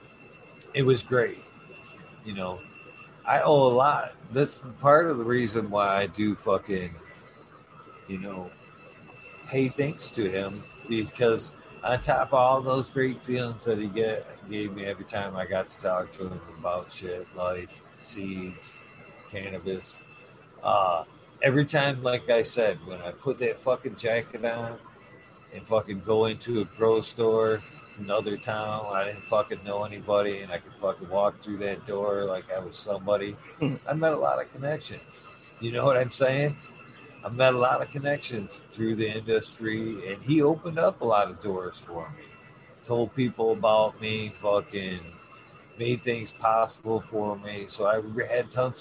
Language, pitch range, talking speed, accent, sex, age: English, 100-130 Hz, 160 wpm, American, male, 50-69